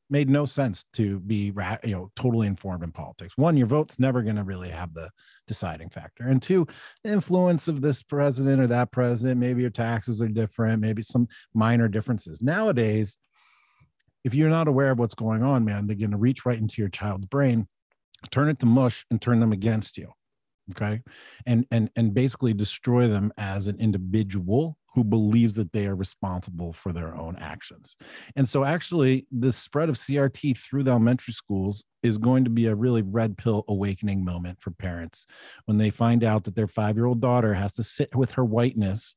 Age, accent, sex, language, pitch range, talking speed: 40-59, American, male, English, 105-130 Hz, 195 wpm